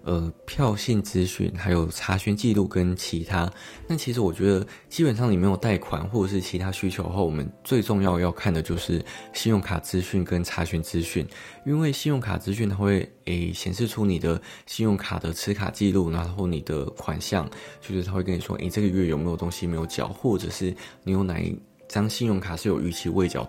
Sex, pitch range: male, 85-100 Hz